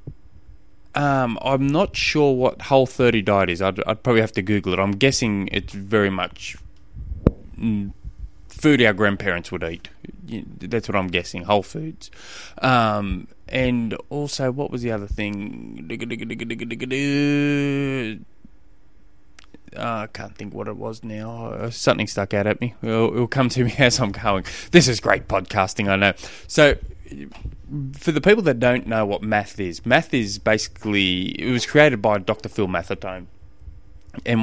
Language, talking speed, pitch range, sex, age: English, 150 wpm, 95-120 Hz, male, 20-39